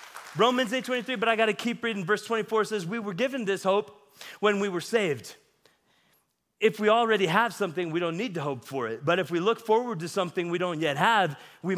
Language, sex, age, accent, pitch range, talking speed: English, male, 30-49, American, 180-235 Hz, 220 wpm